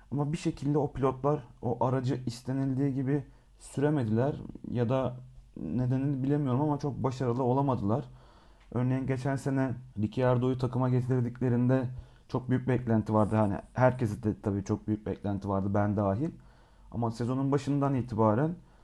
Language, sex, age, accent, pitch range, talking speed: Turkish, male, 40-59, native, 110-145 Hz, 135 wpm